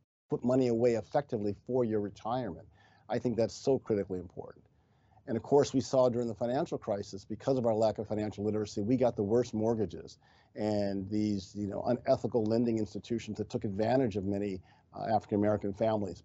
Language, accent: English, American